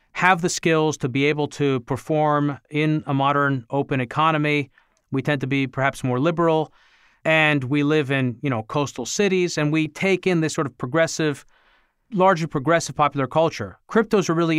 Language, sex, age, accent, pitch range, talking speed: English, male, 40-59, American, 140-180 Hz, 175 wpm